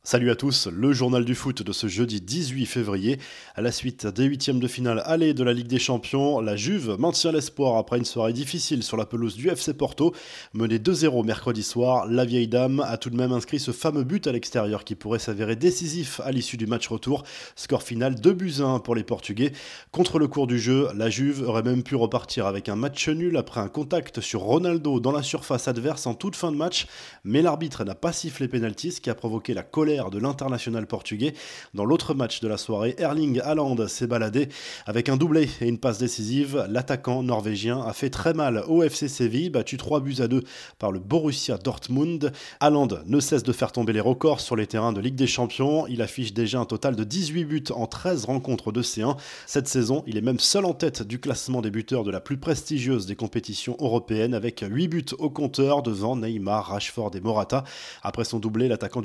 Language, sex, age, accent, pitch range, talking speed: French, male, 20-39, French, 115-145 Hz, 215 wpm